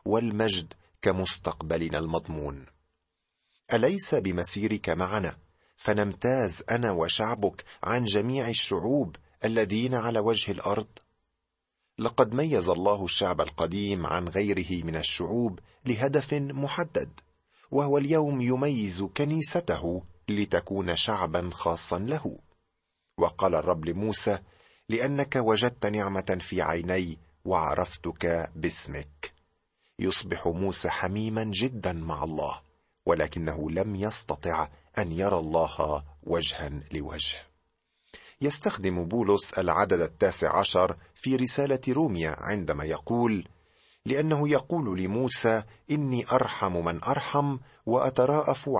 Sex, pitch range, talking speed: male, 85-115 Hz, 95 wpm